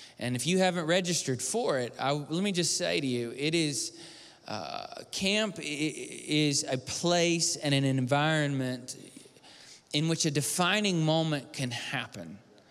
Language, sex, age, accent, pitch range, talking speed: English, male, 20-39, American, 135-180 Hz, 150 wpm